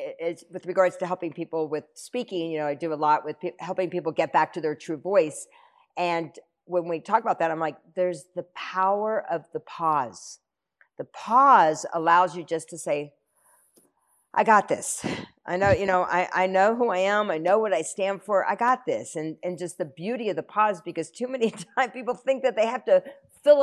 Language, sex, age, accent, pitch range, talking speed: English, female, 50-69, American, 160-210 Hz, 220 wpm